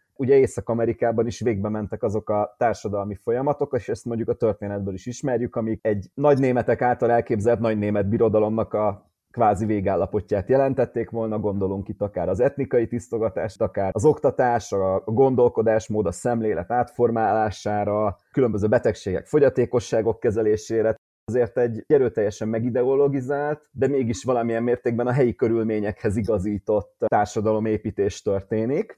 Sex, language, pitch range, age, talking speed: male, Hungarian, 105-125 Hz, 30-49, 130 wpm